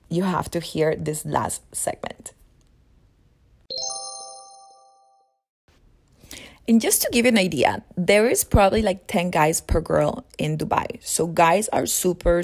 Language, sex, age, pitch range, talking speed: English, female, 30-49, 160-195 Hz, 135 wpm